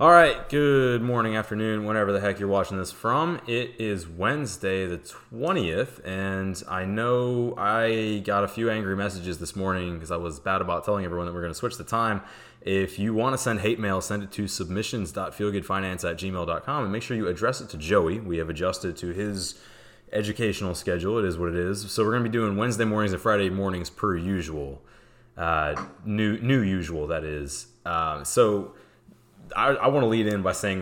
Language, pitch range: English, 90-115 Hz